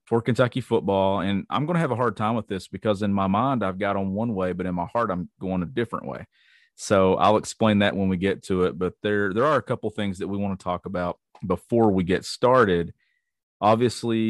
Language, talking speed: English, 250 wpm